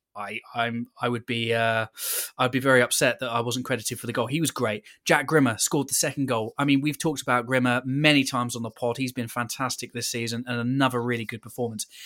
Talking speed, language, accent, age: 235 wpm, English, British, 20-39